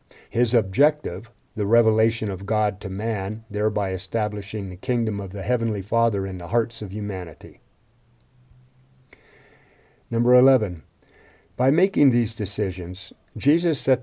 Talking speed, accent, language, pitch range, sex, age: 125 wpm, American, English, 100-125 Hz, male, 50-69